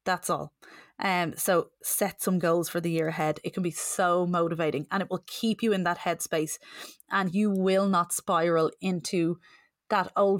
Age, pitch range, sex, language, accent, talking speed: 20-39, 170-210 Hz, female, English, Irish, 185 wpm